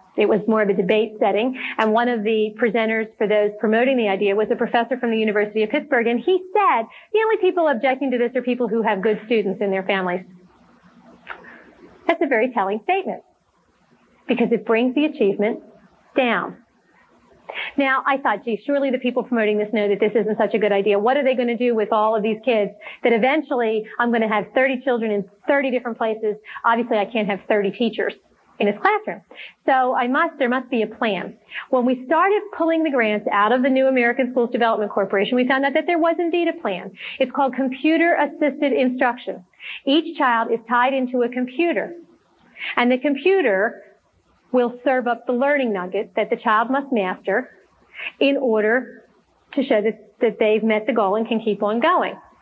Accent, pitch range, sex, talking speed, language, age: American, 215-275 Hz, female, 200 wpm, English, 40-59